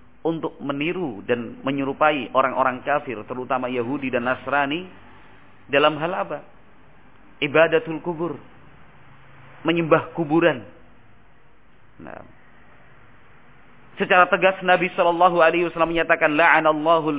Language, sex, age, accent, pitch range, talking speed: Indonesian, male, 40-59, native, 125-175 Hz, 80 wpm